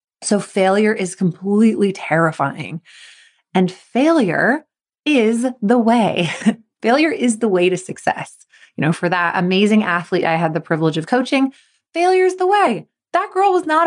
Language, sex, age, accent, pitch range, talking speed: English, female, 20-39, American, 170-245 Hz, 155 wpm